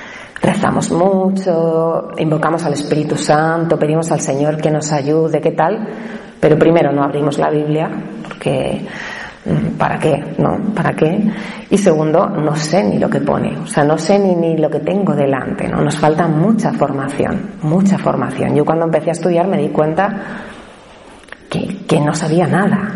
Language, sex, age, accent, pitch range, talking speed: Spanish, female, 30-49, Spanish, 155-195 Hz, 165 wpm